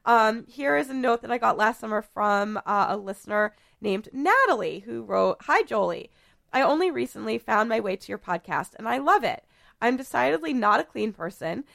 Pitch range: 195-270 Hz